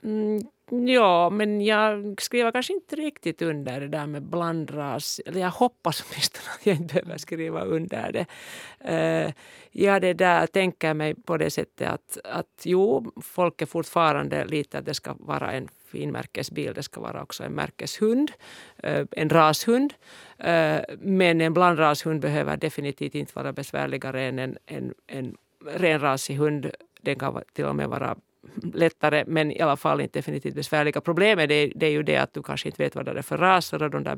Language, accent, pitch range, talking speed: Swedish, Finnish, 150-185 Hz, 185 wpm